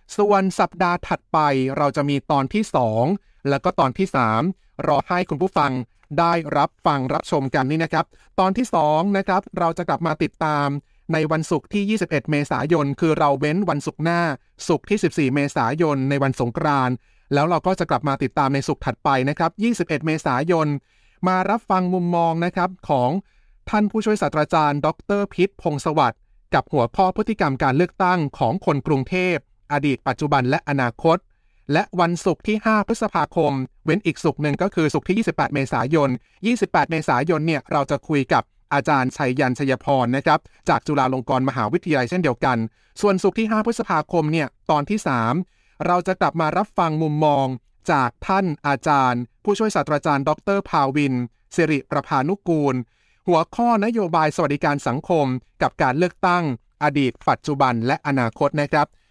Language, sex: English, male